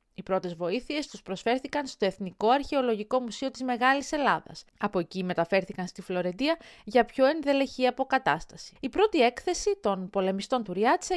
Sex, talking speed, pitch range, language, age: female, 150 wpm, 195-275 Hz, Greek, 30-49